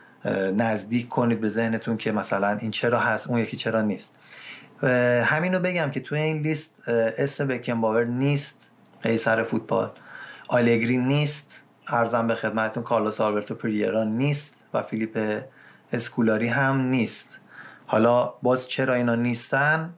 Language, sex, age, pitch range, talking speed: Persian, male, 30-49, 115-140 Hz, 135 wpm